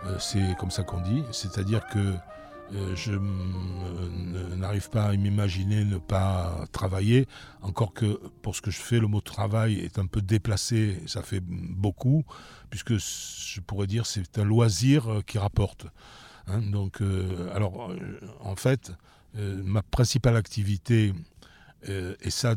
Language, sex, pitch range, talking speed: French, male, 95-115 Hz, 135 wpm